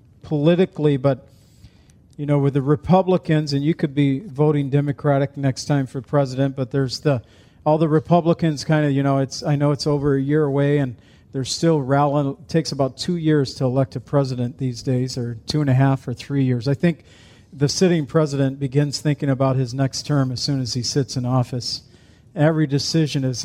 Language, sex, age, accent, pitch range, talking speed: English, male, 50-69, American, 130-155 Hz, 195 wpm